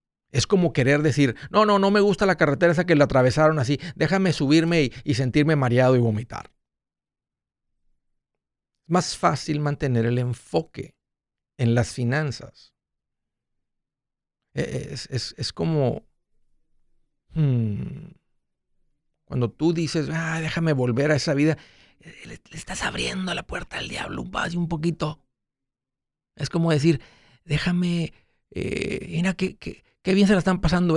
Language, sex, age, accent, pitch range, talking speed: Spanish, male, 50-69, Mexican, 135-175 Hz, 140 wpm